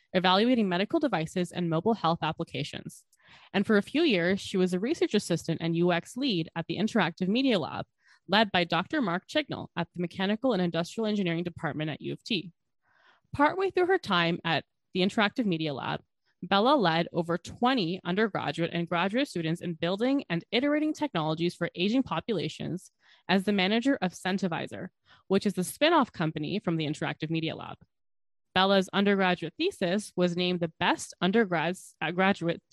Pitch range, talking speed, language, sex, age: 165-220 Hz, 165 wpm, English, female, 20-39